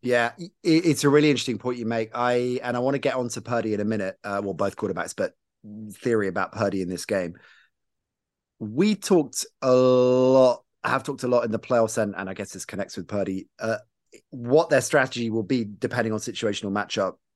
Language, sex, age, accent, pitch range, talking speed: English, male, 30-49, British, 105-130 Hz, 205 wpm